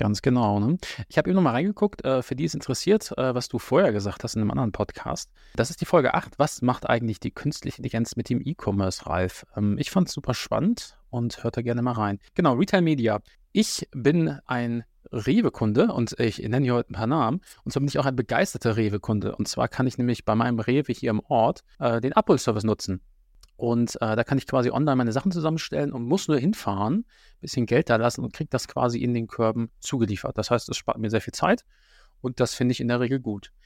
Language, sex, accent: German, male, German